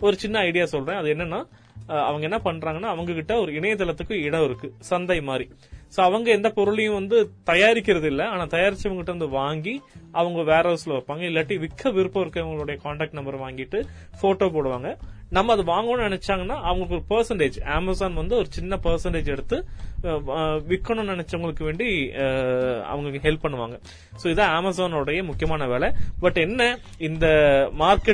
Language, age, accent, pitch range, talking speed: Tamil, 20-39, native, 145-185 Hz, 100 wpm